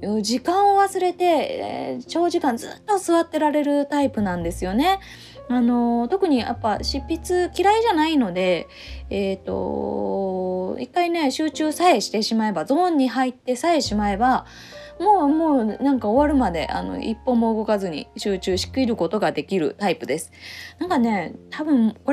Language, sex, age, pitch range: Japanese, female, 20-39, 200-295 Hz